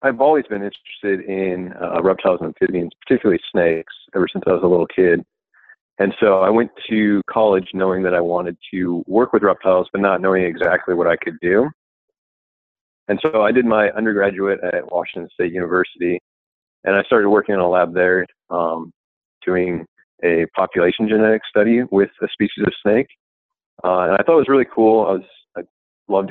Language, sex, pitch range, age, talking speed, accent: English, male, 85-105 Hz, 40-59, 180 wpm, American